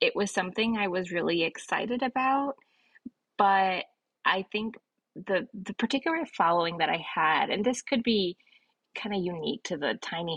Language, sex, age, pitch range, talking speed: English, female, 20-39, 170-240 Hz, 160 wpm